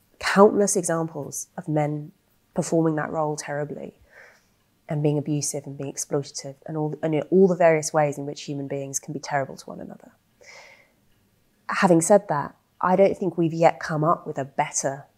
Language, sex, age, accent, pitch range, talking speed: English, female, 30-49, British, 140-170 Hz, 170 wpm